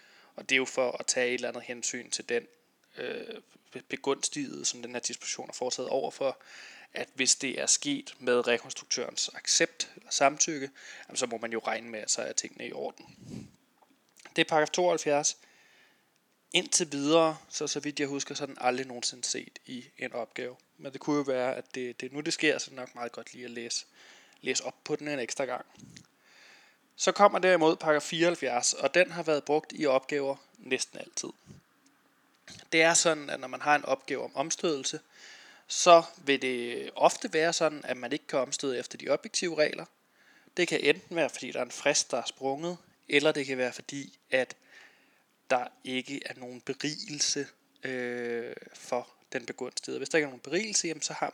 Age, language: 20-39, Danish